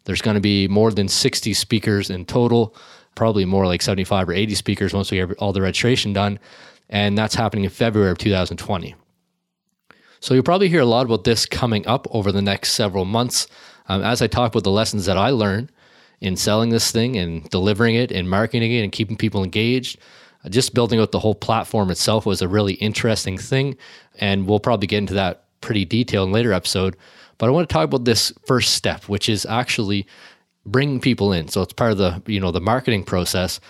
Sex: male